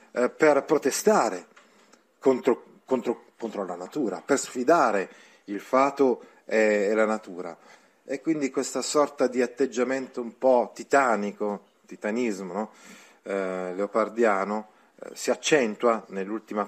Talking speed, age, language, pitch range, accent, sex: 105 wpm, 40-59, Italian, 100-125 Hz, native, male